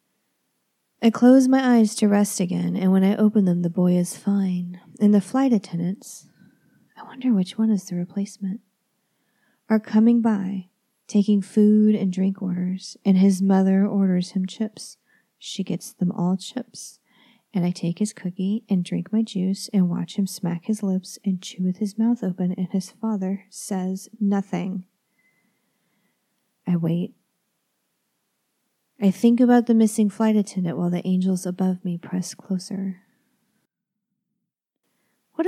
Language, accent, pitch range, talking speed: English, American, 185-220 Hz, 150 wpm